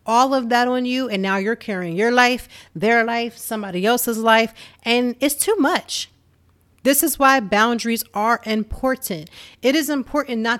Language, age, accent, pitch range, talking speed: English, 40-59, American, 195-255 Hz, 170 wpm